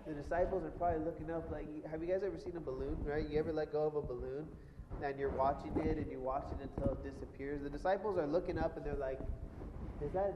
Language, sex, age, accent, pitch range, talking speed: English, male, 20-39, American, 145-180 Hz, 250 wpm